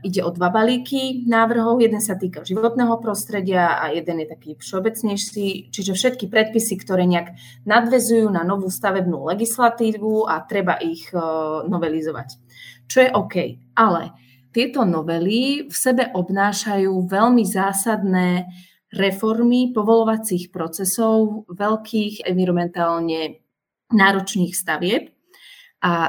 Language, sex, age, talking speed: Slovak, female, 30-49, 110 wpm